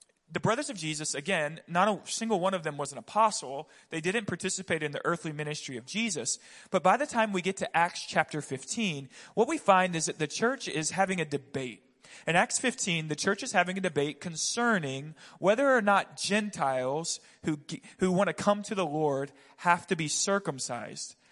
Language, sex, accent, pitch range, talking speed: English, male, American, 155-205 Hz, 195 wpm